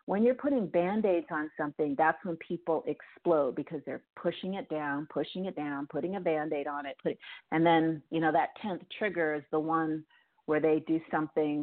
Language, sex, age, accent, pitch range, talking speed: English, female, 40-59, American, 150-175 Hz, 195 wpm